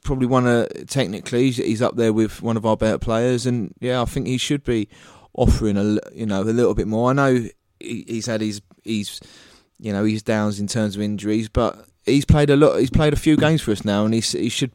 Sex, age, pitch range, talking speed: male, 20-39, 105-120 Hz, 235 wpm